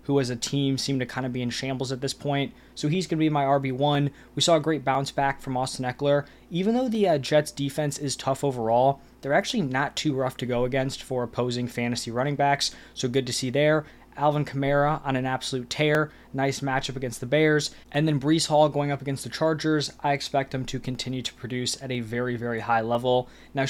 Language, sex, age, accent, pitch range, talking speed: English, male, 20-39, American, 130-145 Hz, 230 wpm